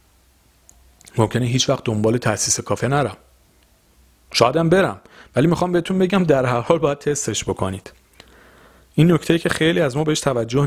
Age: 40-59